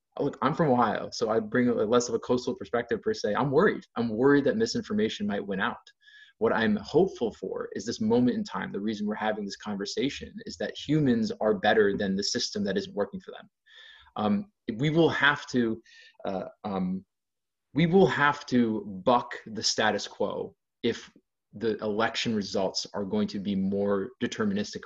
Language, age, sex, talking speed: English, 20-39, male, 185 wpm